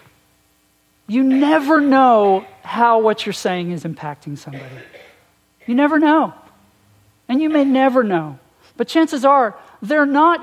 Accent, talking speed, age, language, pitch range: American, 130 wpm, 50-69, English, 165-245 Hz